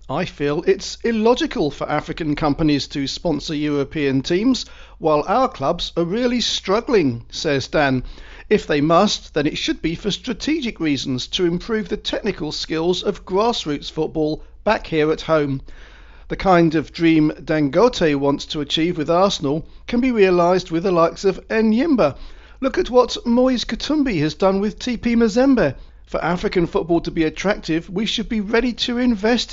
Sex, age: male, 40-59